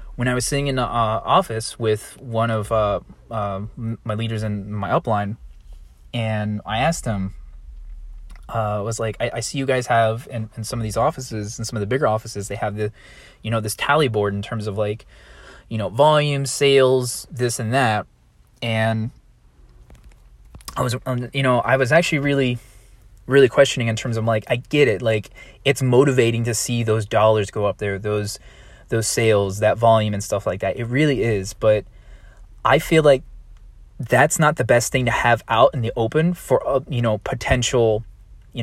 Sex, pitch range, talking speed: male, 105-130 Hz, 190 wpm